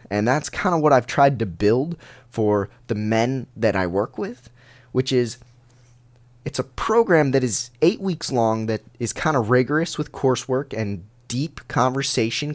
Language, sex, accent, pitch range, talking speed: English, male, American, 110-135 Hz, 170 wpm